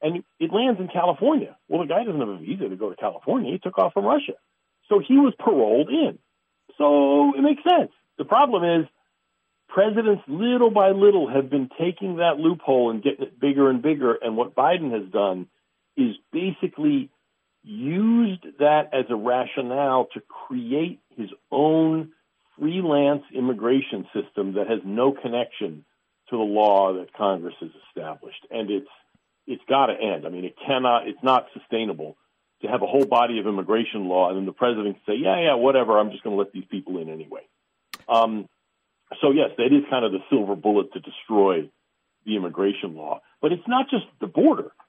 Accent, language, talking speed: American, English, 185 wpm